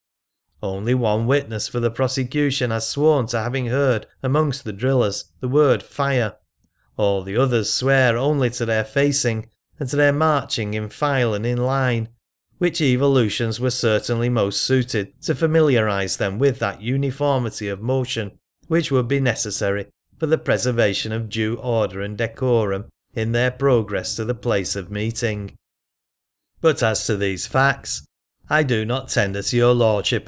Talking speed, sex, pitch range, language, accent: 160 wpm, male, 110-135 Hz, English, British